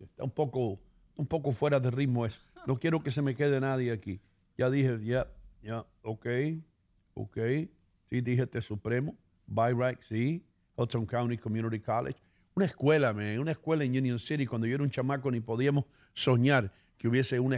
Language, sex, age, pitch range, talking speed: English, male, 50-69, 115-140 Hz, 190 wpm